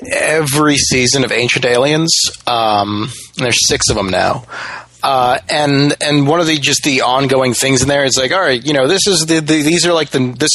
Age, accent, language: 30-49, American, English